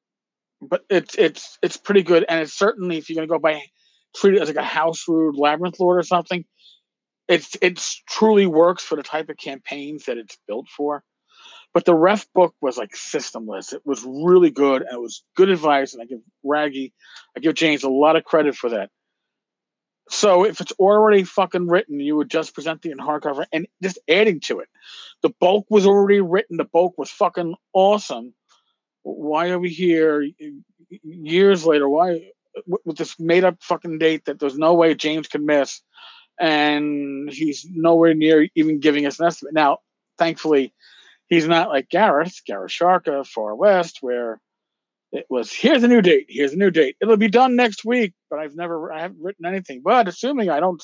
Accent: American